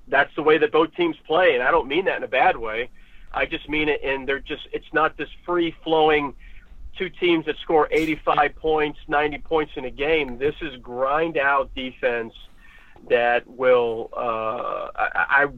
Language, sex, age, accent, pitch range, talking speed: English, male, 50-69, American, 130-175 Hz, 175 wpm